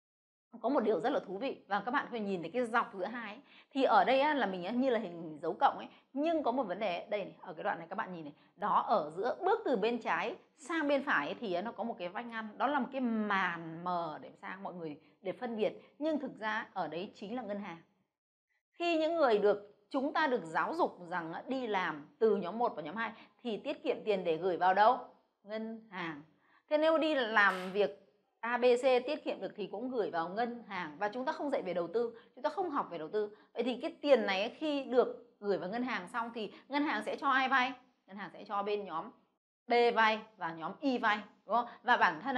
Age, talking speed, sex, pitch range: 20-39, 255 wpm, female, 190-255 Hz